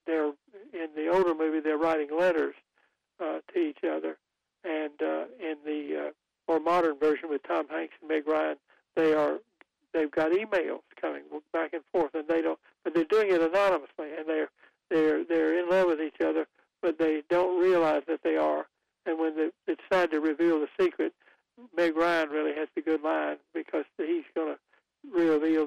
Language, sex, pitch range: English, male, 155-180 Hz